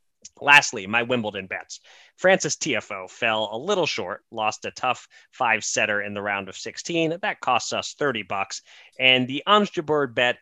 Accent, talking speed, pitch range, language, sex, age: American, 165 wpm, 110-150 Hz, English, male, 30-49